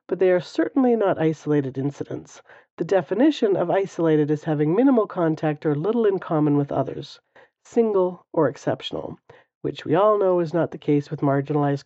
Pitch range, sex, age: 150-200 Hz, female, 40-59